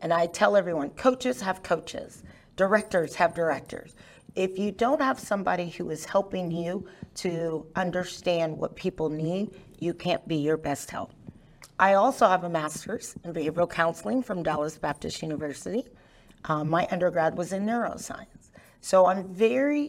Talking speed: 155 wpm